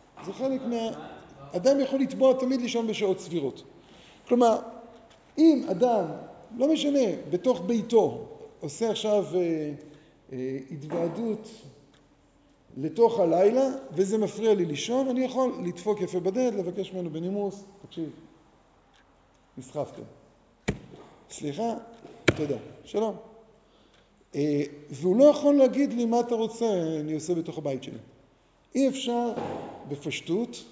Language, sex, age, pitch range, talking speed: Hebrew, male, 50-69, 160-230 Hz, 115 wpm